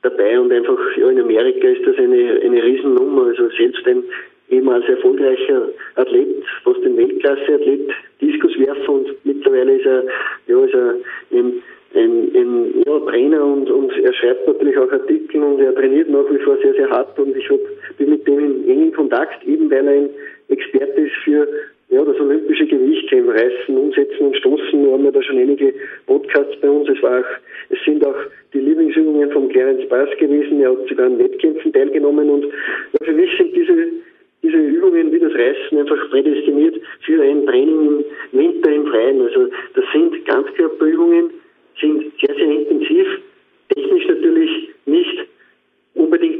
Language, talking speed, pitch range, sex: German, 170 wpm, 345-405 Hz, male